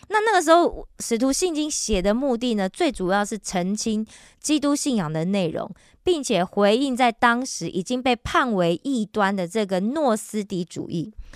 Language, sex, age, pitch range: Korean, female, 20-39, 190-265 Hz